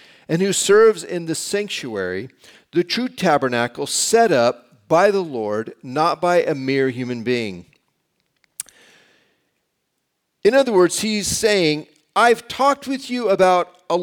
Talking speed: 135 wpm